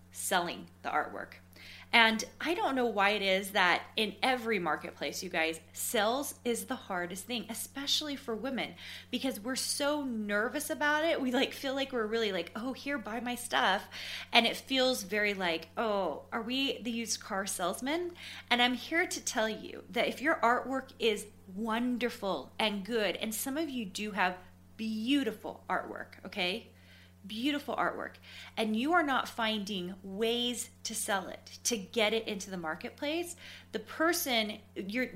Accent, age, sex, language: American, 20-39, female, English